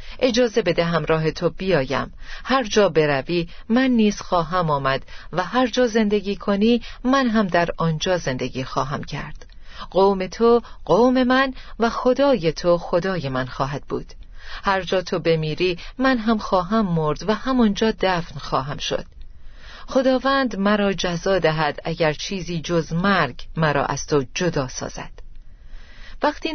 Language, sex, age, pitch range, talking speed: Persian, female, 40-59, 155-230 Hz, 140 wpm